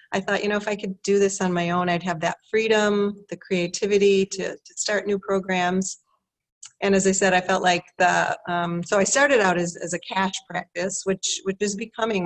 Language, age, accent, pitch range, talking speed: English, 40-59, American, 170-195 Hz, 220 wpm